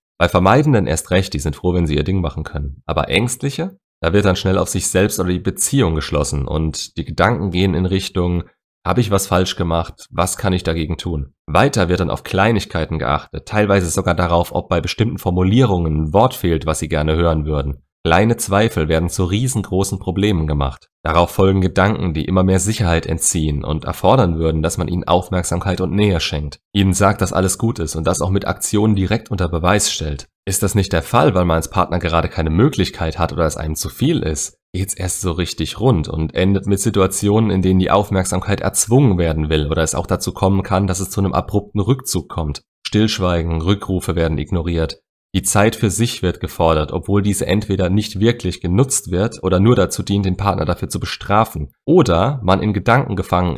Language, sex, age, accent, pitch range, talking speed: German, male, 30-49, German, 80-100 Hz, 205 wpm